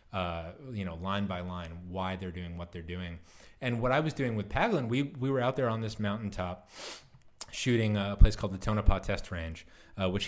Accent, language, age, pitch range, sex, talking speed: American, English, 20-39, 95-120 Hz, male, 215 wpm